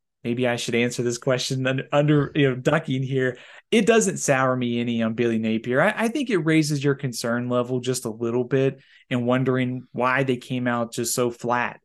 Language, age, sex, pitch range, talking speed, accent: English, 30-49, male, 120-145 Hz, 210 wpm, American